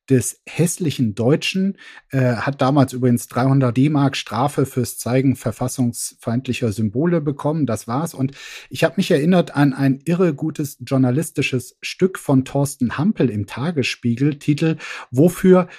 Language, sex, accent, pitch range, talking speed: German, male, German, 125-160 Hz, 135 wpm